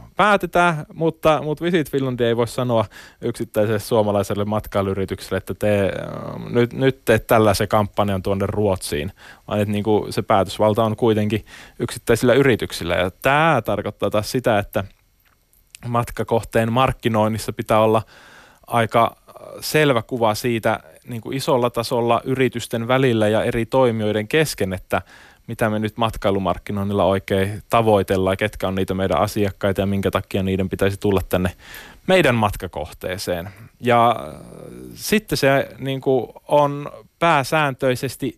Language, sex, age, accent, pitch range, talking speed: Finnish, male, 20-39, native, 105-135 Hz, 125 wpm